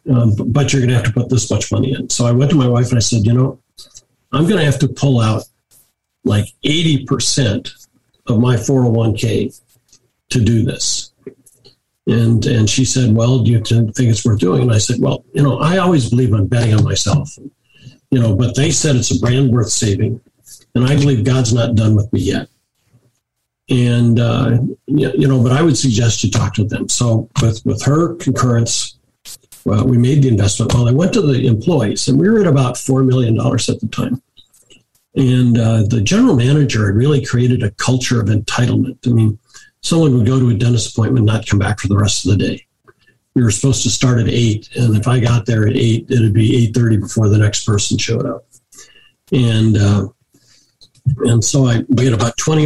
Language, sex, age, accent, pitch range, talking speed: English, male, 50-69, American, 115-130 Hz, 205 wpm